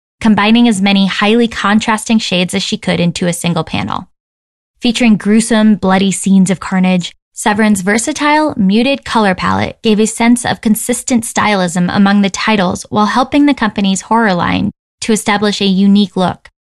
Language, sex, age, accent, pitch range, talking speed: English, female, 10-29, American, 180-220 Hz, 160 wpm